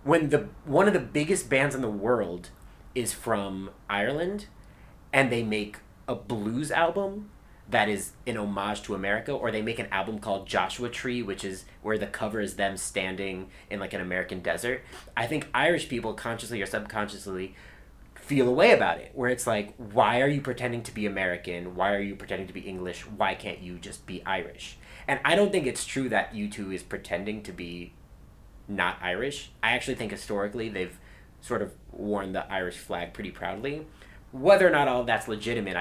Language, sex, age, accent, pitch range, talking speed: English, male, 30-49, American, 100-135 Hz, 190 wpm